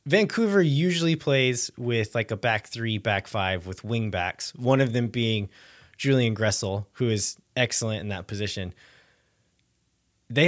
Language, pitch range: English, 105-135 Hz